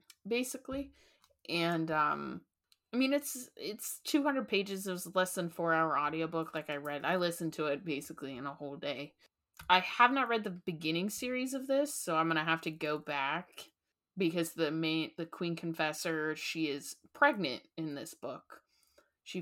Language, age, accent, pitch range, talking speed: English, 20-39, American, 150-180 Hz, 175 wpm